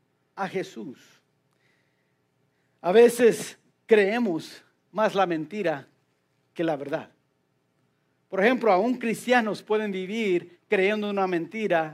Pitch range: 175-235 Hz